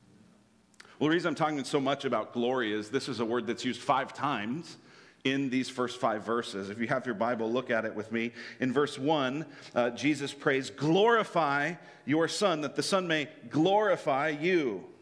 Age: 40-59